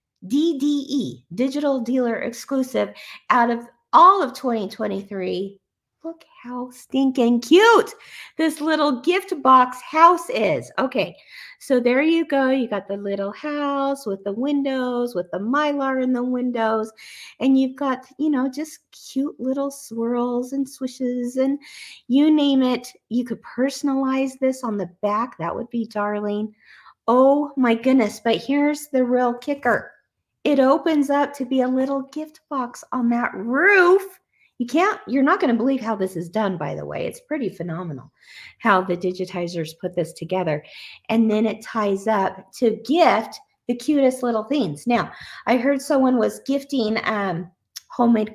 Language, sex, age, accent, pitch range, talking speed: English, female, 40-59, American, 220-285 Hz, 155 wpm